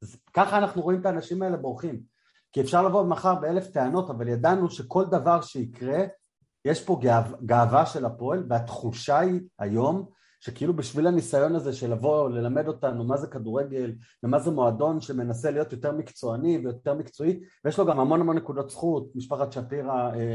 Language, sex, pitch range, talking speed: Hebrew, male, 120-175 Hz, 160 wpm